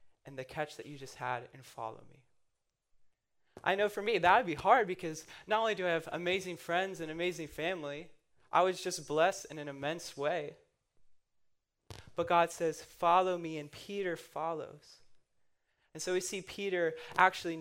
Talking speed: 175 wpm